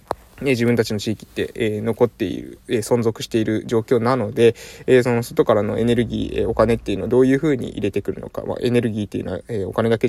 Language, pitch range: Japanese, 115-140 Hz